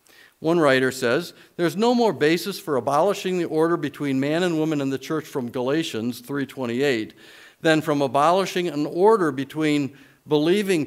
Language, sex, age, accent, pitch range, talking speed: English, male, 50-69, American, 130-180 Hz, 155 wpm